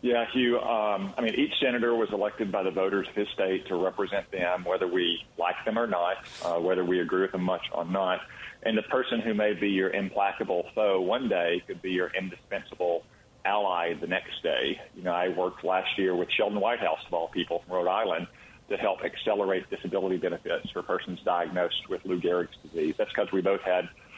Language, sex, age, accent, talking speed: English, male, 40-59, American, 210 wpm